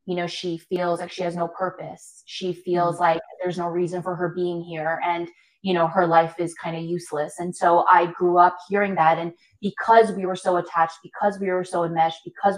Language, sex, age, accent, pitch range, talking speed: English, female, 20-39, American, 170-190 Hz, 225 wpm